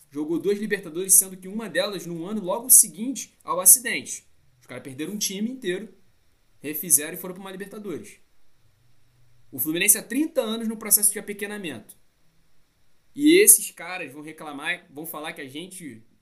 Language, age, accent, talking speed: Portuguese, 20-39, Brazilian, 165 wpm